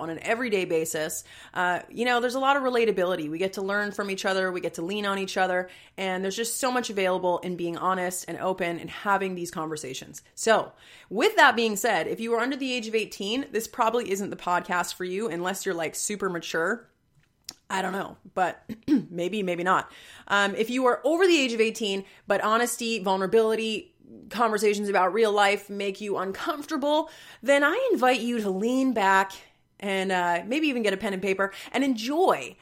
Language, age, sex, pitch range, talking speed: English, 30-49, female, 175-240 Hz, 200 wpm